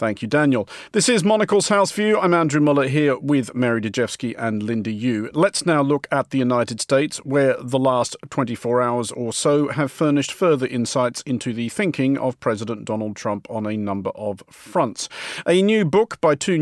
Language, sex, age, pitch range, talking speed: English, male, 50-69, 115-160 Hz, 190 wpm